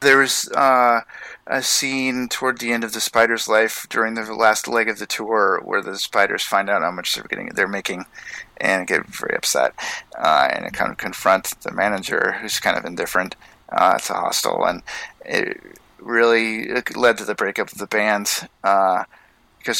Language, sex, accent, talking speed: English, male, American, 175 wpm